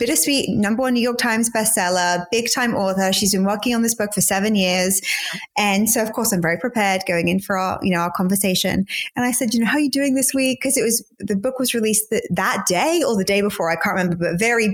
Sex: female